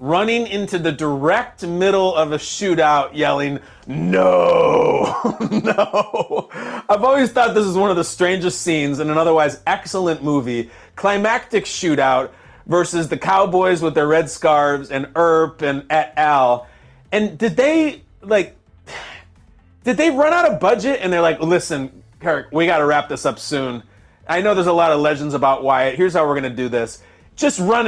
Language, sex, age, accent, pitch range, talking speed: English, male, 30-49, American, 135-200 Hz, 170 wpm